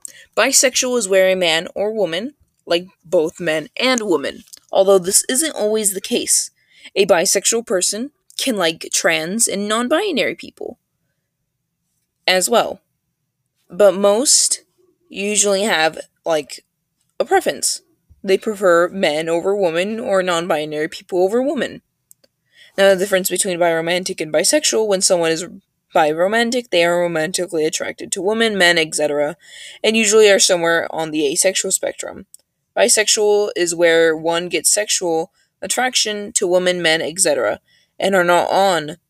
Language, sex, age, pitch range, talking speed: English, female, 20-39, 175-235 Hz, 135 wpm